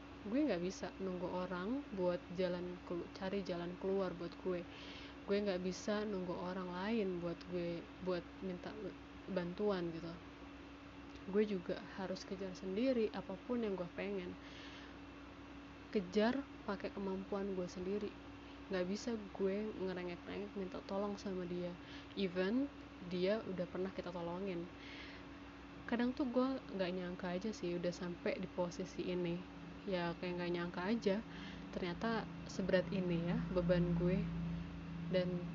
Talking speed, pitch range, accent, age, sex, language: 130 wpm, 180-210 Hz, native, 20-39, female, Indonesian